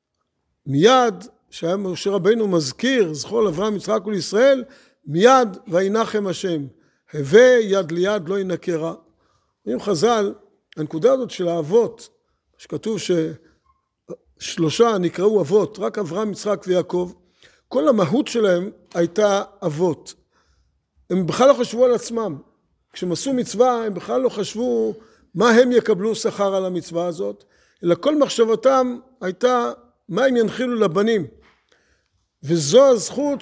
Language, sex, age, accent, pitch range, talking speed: Hebrew, male, 50-69, native, 185-235 Hz, 115 wpm